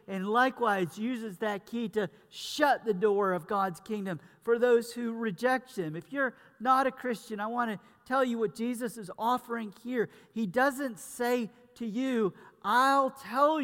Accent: American